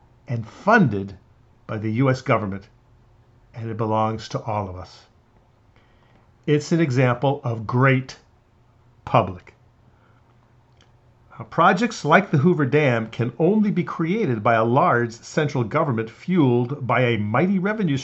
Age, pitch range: 50-69, 115-145 Hz